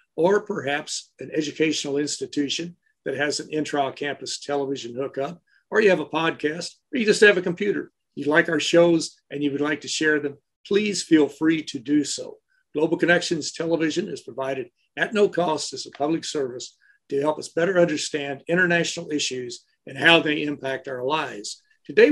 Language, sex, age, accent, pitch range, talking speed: English, male, 60-79, American, 140-175 Hz, 175 wpm